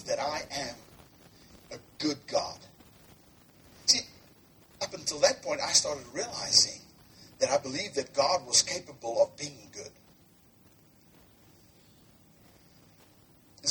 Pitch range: 260-335 Hz